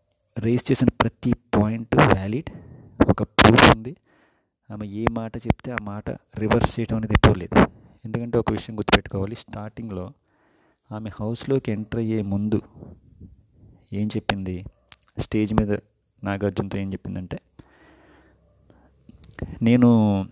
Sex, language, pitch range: male, Telugu, 100-120 Hz